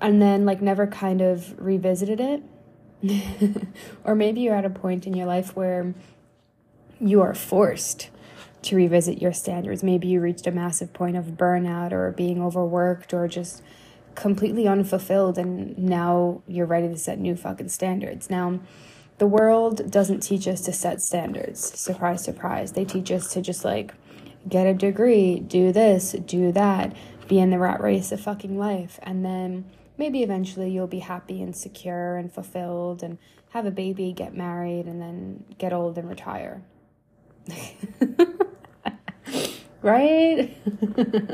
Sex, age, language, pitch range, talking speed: female, 10-29, English, 180-200 Hz, 150 wpm